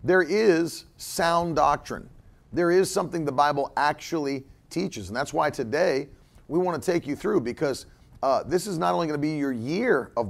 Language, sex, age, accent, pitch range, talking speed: English, male, 40-59, American, 135-165 Hz, 190 wpm